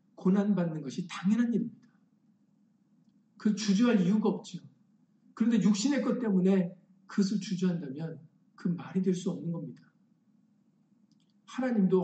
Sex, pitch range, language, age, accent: male, 180-220 Hz, Korean, 50-69, native